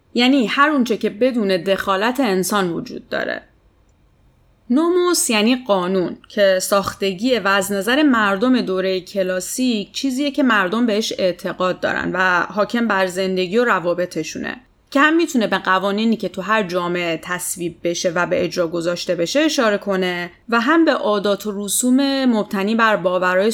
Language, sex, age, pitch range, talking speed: Persian, female, 30-49, 185-245 Hz, 145 wpm